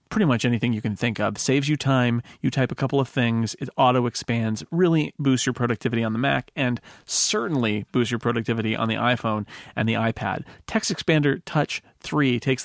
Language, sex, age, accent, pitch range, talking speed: English, male, 40-59, American, 120-145 Hz, 200 wpm